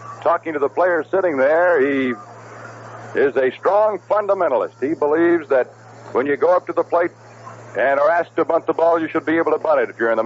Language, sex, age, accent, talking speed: English, male, 60-79, American, 230 wpm